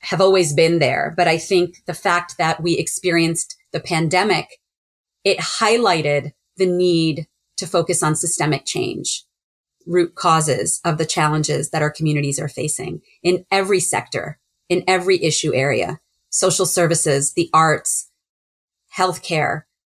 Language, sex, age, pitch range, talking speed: English, female, 30-49, 165-195 Hz, 135 wpm